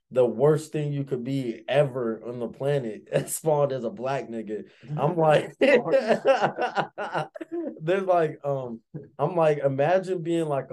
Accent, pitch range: American, 120-150 Hz